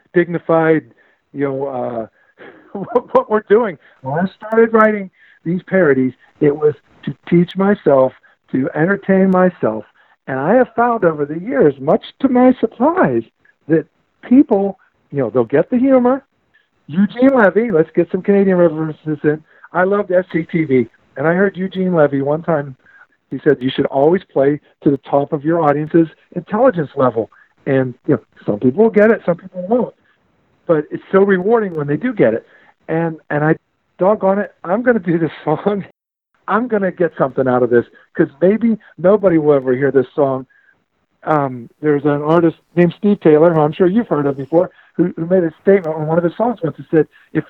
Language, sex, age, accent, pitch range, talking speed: English, male, 50-69, American, 150-200 Hz, 185 wpm